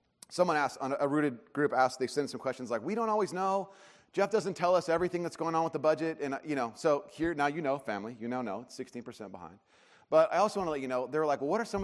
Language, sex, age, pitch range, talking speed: English, male, 30-49, 140-185 Hz, 295 wpm